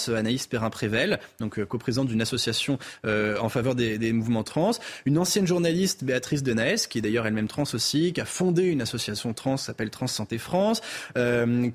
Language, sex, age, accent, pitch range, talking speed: French, male, 20-39, French, 120-165 Hz, 185 wpm